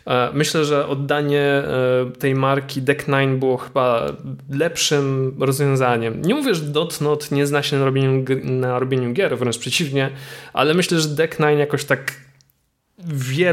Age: 20-39